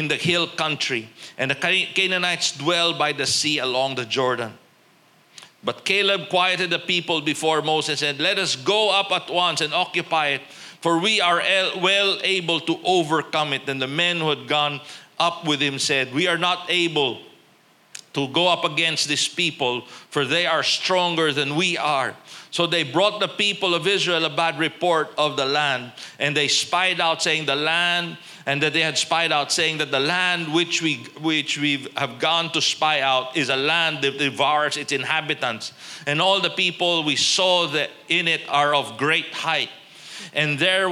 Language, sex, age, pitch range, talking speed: Filipino, male, 50-69, 145-175 Hz, 185 wpm